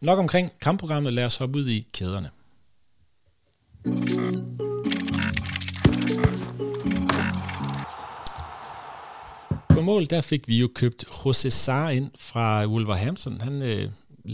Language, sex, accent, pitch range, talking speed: Danish, male, native, 105-135 Hz, 95 wpm